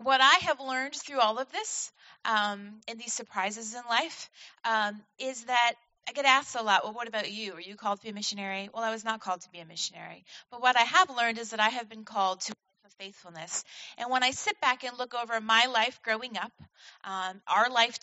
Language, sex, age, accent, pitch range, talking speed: English, female, 30-49, American, 205-255 Hz, 240 wpm